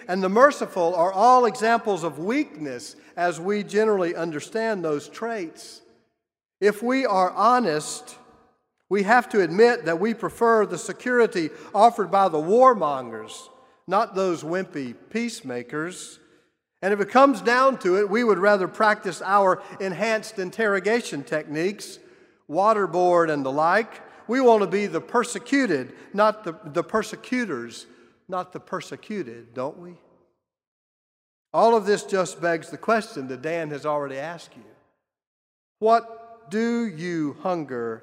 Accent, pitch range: American, 150-225 Hz